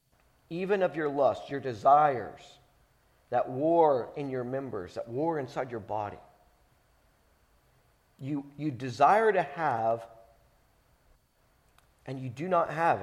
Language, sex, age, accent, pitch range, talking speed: English, male, 50-69, American, 115-165 Hz, 120 wpm